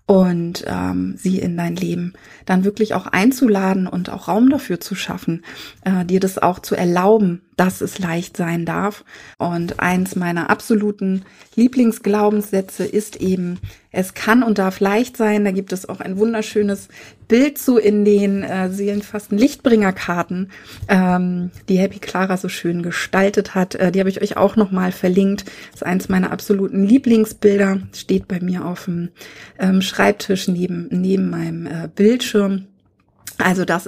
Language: German